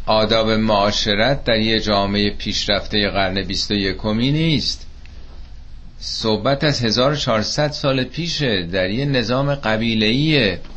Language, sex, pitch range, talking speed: Persian, male, 85-130 Hz, 110 wpm